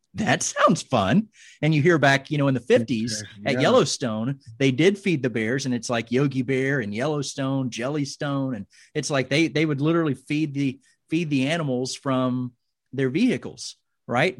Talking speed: 180 wpm